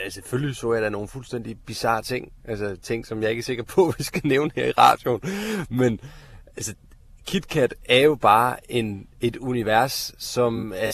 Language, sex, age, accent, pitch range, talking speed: Danish, male, 30-49, native, 110-135 Hz, 185 wpm